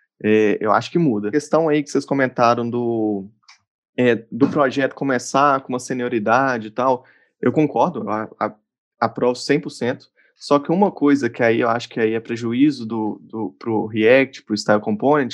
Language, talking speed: Portuguese, 175 wpm